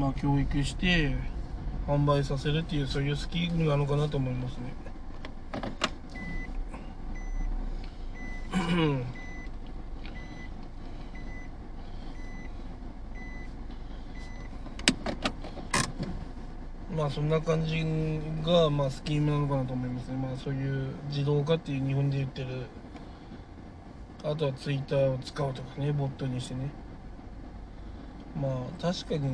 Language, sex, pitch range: Japanese, male, 130-155 Hz